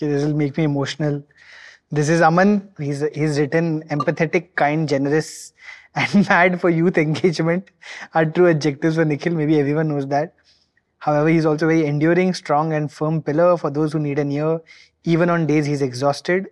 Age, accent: 20-39, Indian